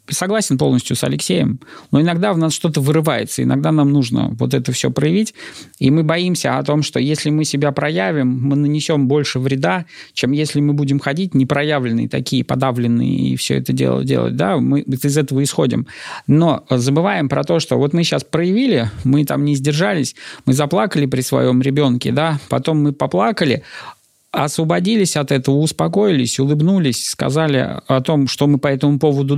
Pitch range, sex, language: 130-160 Hz, male, Russian